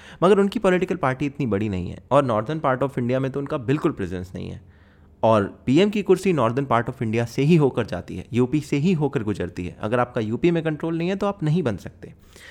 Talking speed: 245 wpm